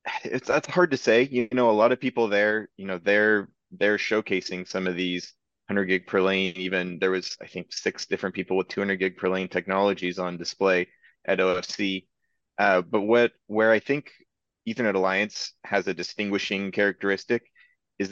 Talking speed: 180 wpm